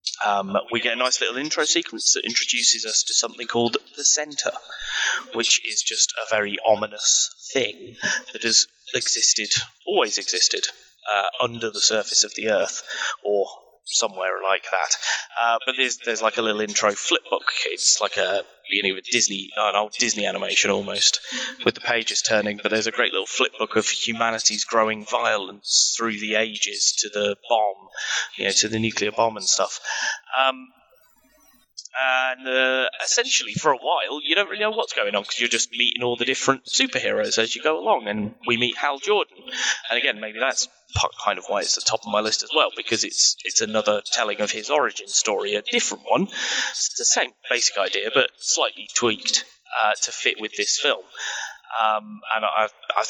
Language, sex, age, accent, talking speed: English, male, 20-39, British, 185 wpm